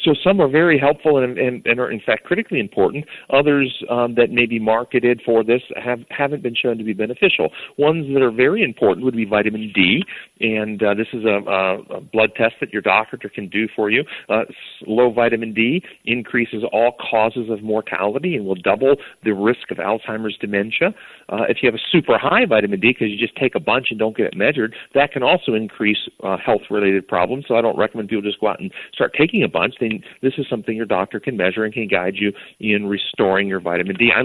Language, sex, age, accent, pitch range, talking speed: English, male, 40-59, American, 105-130 Hz, 225 wpm